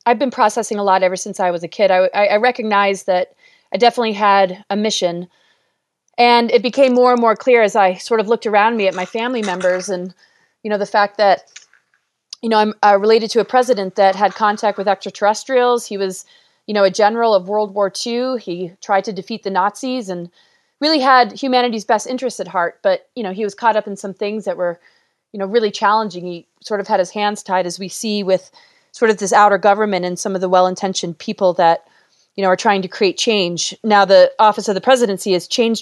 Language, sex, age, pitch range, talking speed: English, female, 30-49, 195-245 Hz, 225 wpm